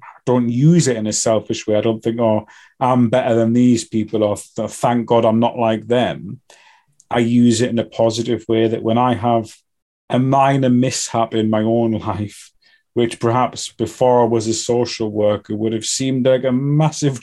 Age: 30-49